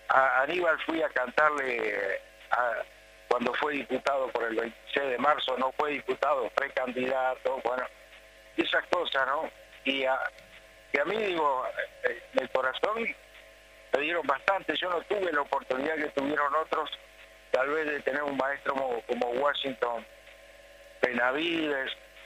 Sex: male